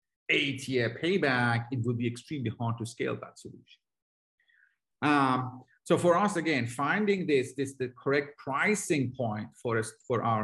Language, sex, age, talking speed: English, male, 50-69, 160 wpm